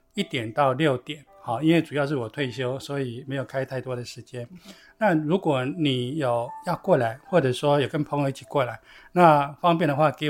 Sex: male